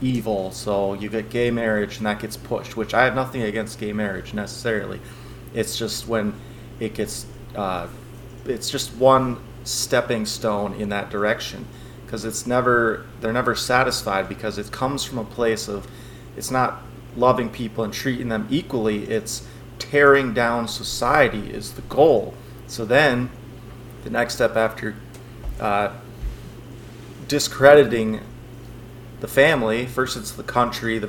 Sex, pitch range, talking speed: male, 110-125 Hz, 145 wpm